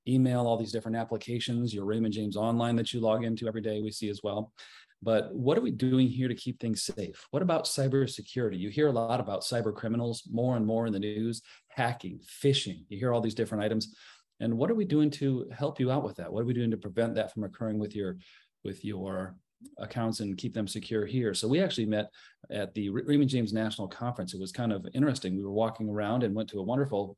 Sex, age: male, 40-59